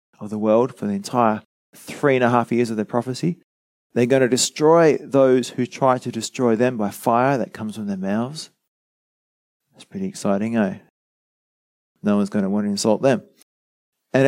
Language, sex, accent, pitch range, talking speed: English, male, Australian, 105-135 Hz, 185 wpm